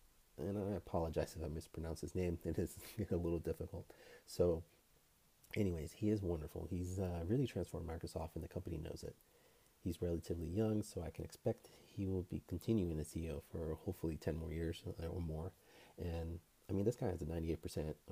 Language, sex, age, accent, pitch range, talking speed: English, male, 30-49, American, 80-95 Hz, 185 wpm